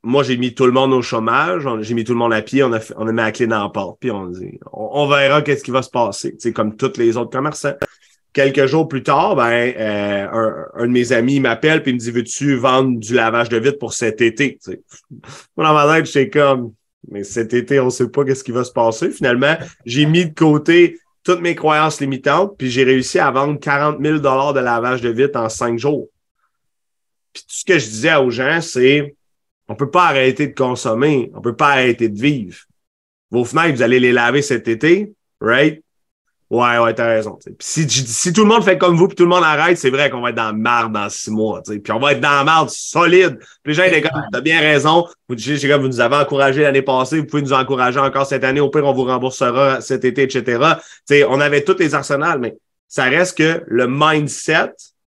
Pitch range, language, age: 120-150 Hz, French, 30-49